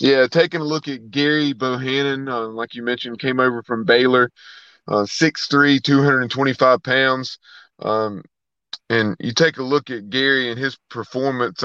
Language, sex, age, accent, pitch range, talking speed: English, male, 30-49, American, 115-130 Hz, 155 wpm